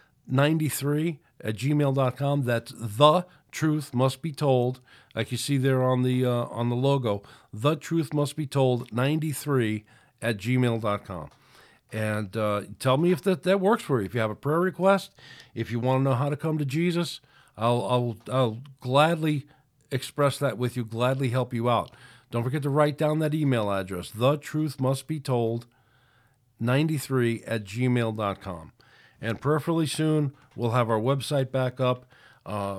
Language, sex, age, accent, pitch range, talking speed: English, male, 50-69, American, 115-145 Hz, 165 wpm